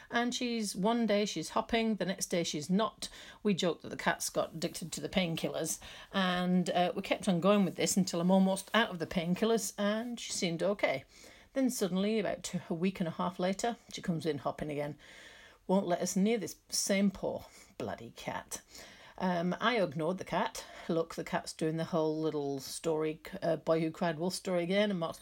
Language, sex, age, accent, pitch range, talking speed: English, female, 40-59, British, 165-220 Hz, 200 wpm